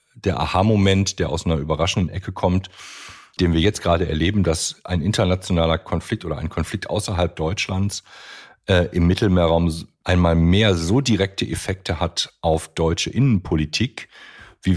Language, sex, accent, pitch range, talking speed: German, male, German, 85-95 Hz, 140 wpm